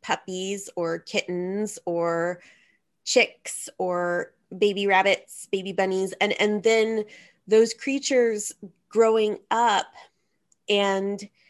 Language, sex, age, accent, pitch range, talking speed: English, female, 20-39, American, 185-220 Hz, 95 wpm